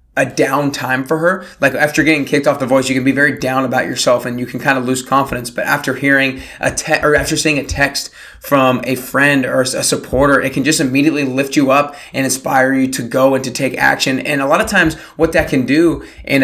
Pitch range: 130-150 Hz